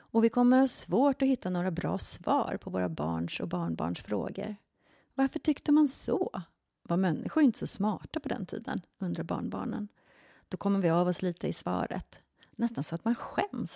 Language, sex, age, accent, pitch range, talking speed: Swedish, female, 30-49, native, 175-230 Hz, 190 wpm